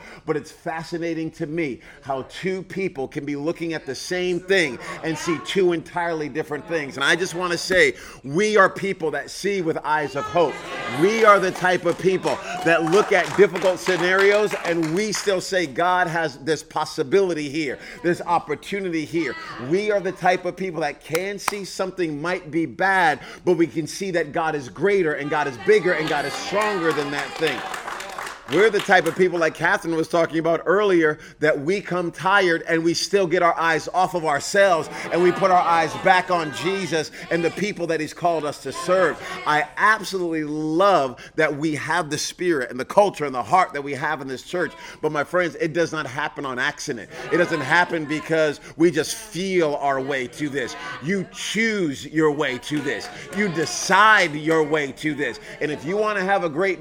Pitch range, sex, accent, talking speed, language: 155-185 Hz, male, American, 205 wpm, English